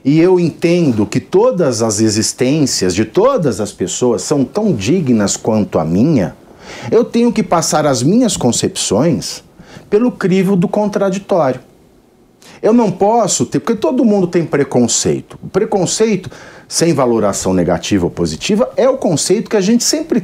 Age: 50-69